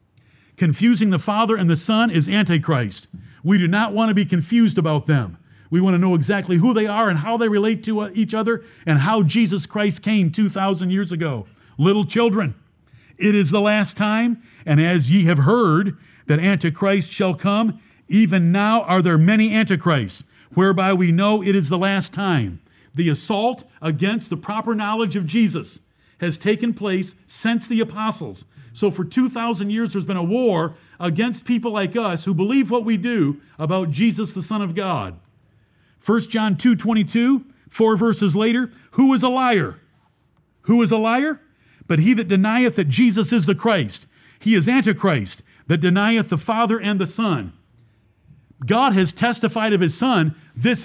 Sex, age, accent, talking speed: male, 50-69, American, 175 wpm